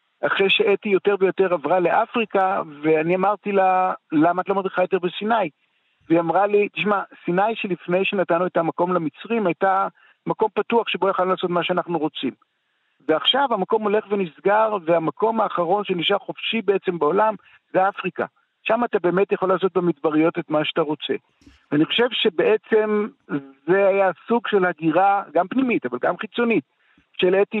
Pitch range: 175-215 Hz